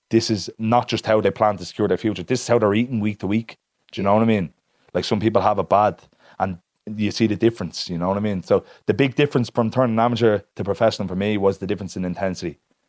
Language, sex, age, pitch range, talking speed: English, male, 20-39, 95-110 Hz, 265 wpm